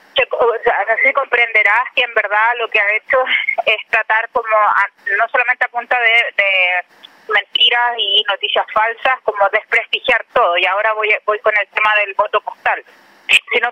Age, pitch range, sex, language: 20-39, 220-265 Hz, female, Spanish